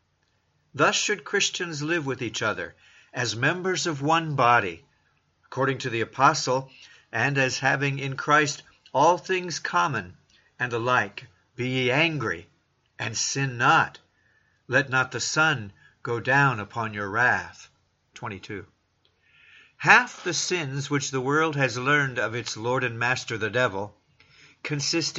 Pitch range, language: 115-150 Hz, English